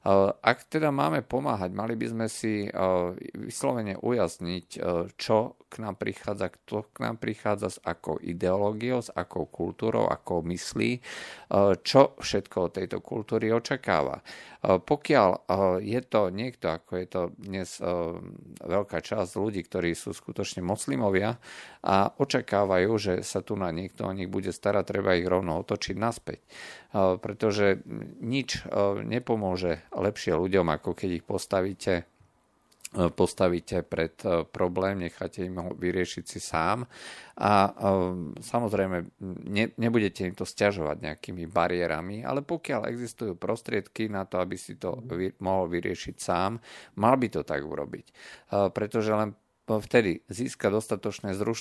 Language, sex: Slovak, male